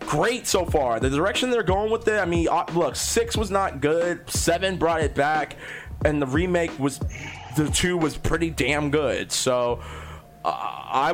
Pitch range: 135-180 Hz